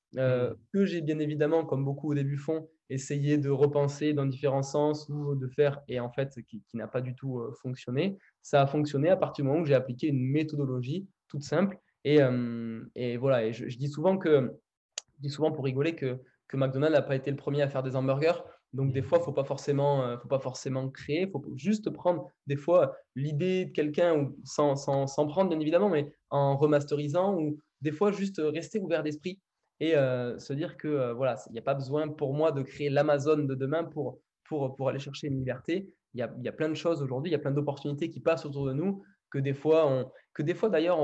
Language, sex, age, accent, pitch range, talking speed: French, male, 20-39, French, 135-155 Hz, 230 wpm